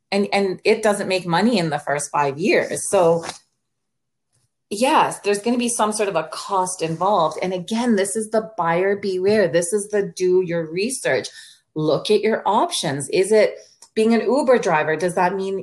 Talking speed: 190 wpm